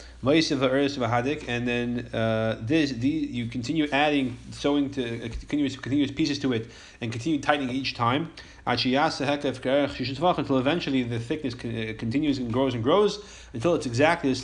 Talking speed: 140 wpm